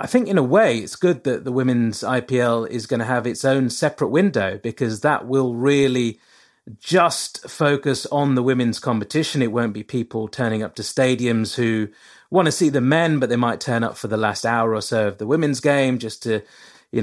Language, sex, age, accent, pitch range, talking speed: English, male, 30-49, British, 115-145 Hz, 215 wpm